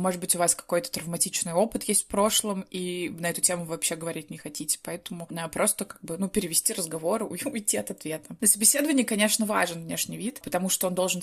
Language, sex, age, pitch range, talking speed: Russian, female, 20-39, 185-230 Hz, 205 wpm